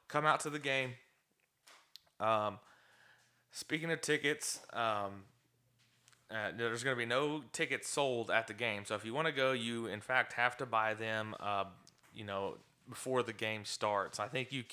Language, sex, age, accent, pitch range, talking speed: English, male, 20-39, American, 105-125 Hz, 180 wpm